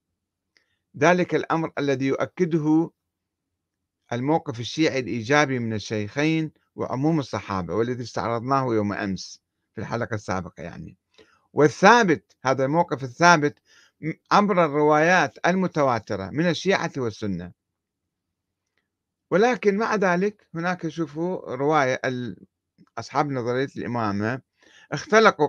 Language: Arabic